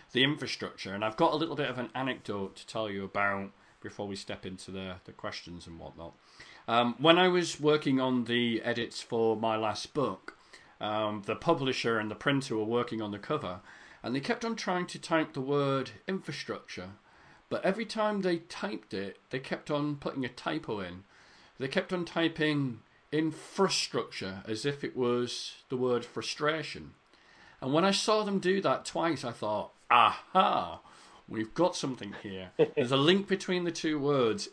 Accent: British